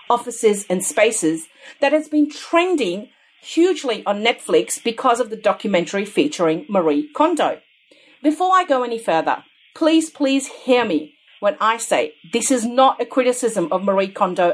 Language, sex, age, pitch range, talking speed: English, female, 40-59, 190-290 Hz, 155 wpm